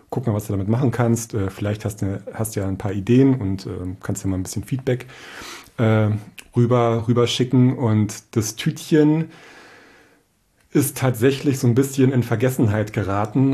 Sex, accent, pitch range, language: male, German, 105-125 Hz, German